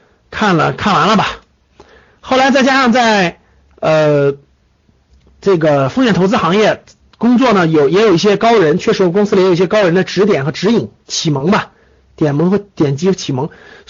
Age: 50-69